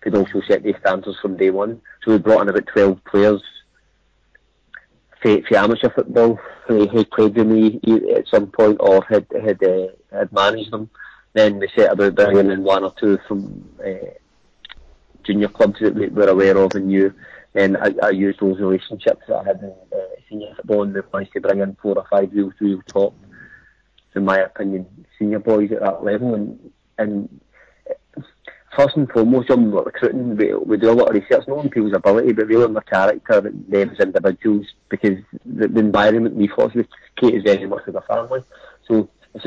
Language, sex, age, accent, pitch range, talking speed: English, male, 30-49, British, 100-115 Hz, 200 wpm